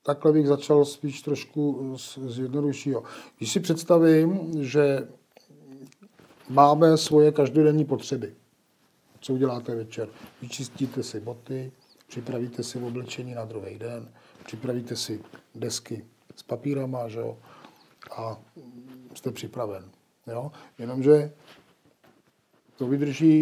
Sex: male